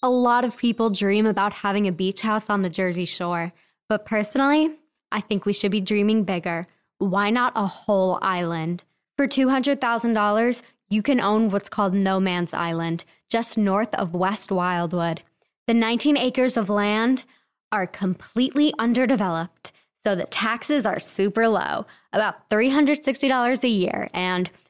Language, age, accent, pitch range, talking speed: English, 20-39, American, 195-245 Hz, 150 wpm